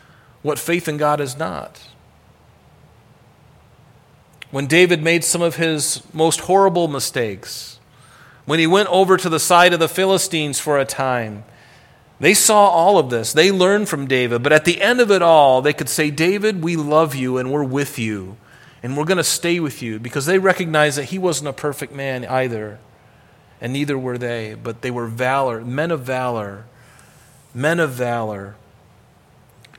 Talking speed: 175 wpm